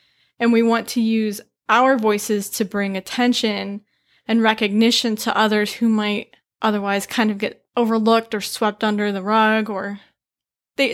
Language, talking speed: English, 155 wpm